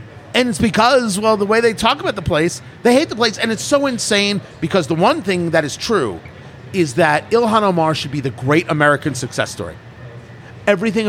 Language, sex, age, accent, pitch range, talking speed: English, male, 30-49, American, 140-225 Hz, 205 wpm